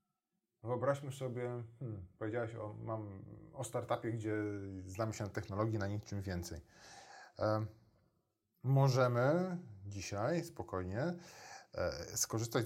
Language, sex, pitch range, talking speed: Polish, male, 100-125 Hz, 85 wpm